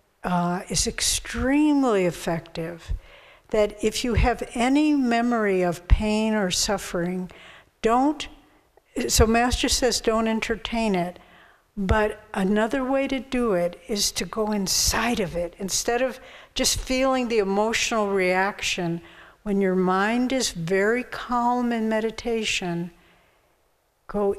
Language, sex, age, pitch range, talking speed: English, female, 60-79, 185-235 Hz, 120 wpm